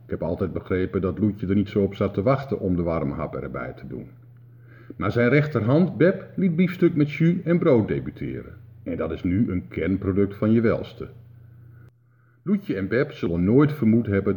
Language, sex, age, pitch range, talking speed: Dutch, male, 50-69, 95-120 Hz, 195 wpm